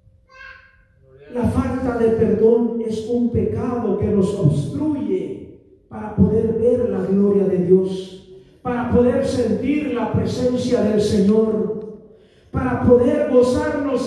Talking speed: 115 wpm